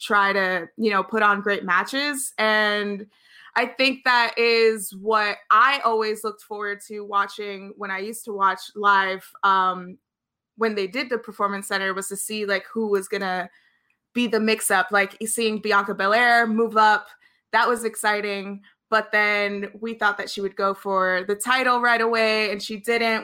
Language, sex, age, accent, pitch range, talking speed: English, female, 20-39, American, 200-230 Hz, 180 wpm